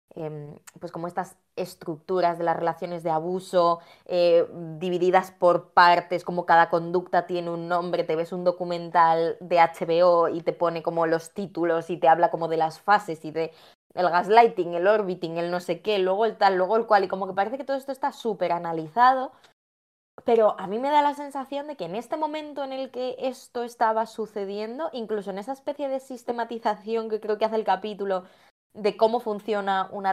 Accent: Spanish